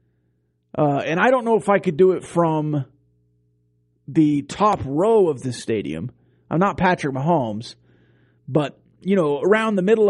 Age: 30-49